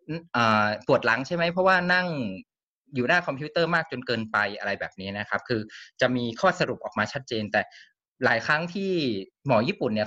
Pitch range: 105-150 Hz